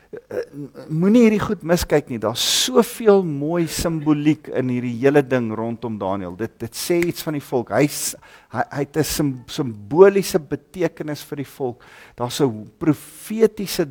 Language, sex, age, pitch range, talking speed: English, male, 50-69, 110-160 Hz, 160 wpm